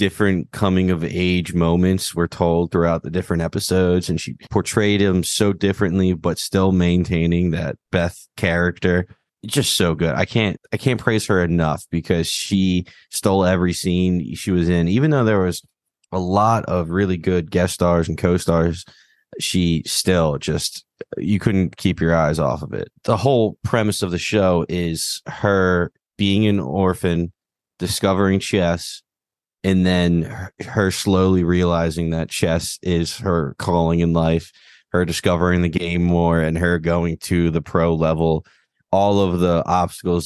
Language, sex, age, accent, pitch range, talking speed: English, male, 20-39, American, 85-95 Hz, 160 wpm